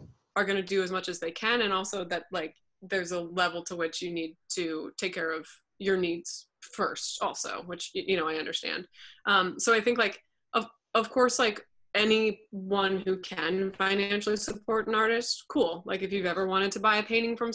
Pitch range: 180-215 Hz